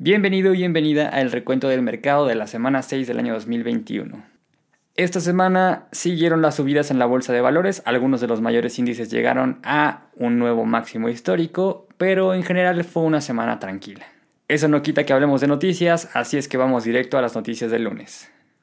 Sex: male